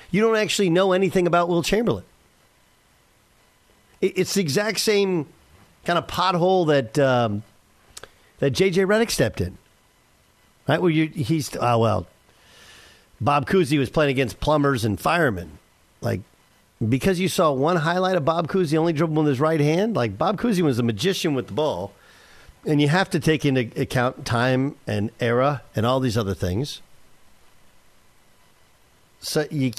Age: 50-69